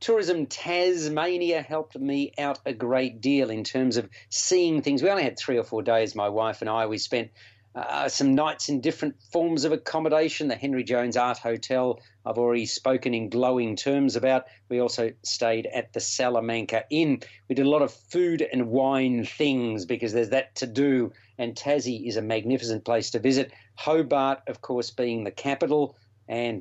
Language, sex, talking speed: English, male, 185 wpm